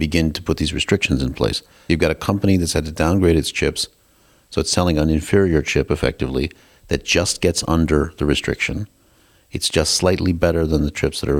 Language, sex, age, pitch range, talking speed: English, male, 40-59, 75-85 Hz, 205 wpm